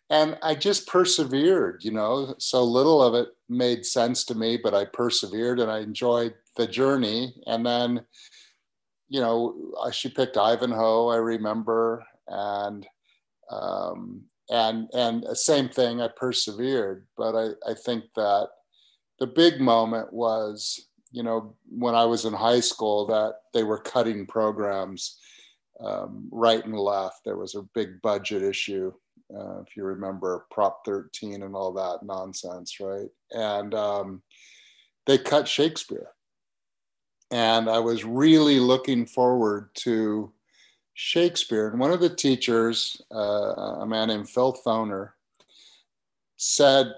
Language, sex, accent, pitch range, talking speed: English, male, American, 110-130 Hz, 135 wpm